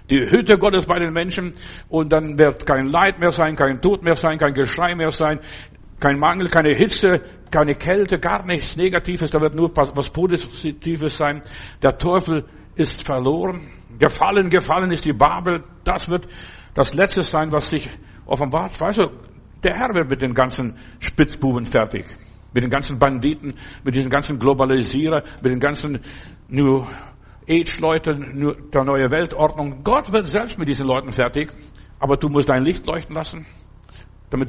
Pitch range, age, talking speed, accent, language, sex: 130-170 Hz, 60-79, 165 wpm, German, German, male